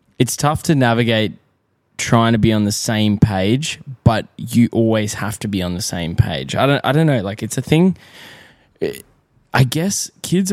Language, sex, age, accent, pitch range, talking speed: English, male, 10-29, Australian, 105-130 Hz, 190 wpm